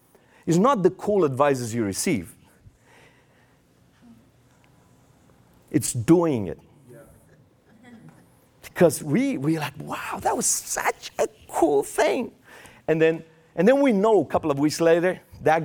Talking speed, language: 125 wpm, English